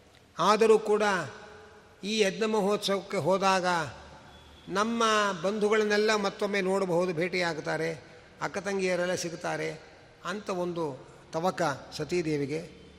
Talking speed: 85 wpm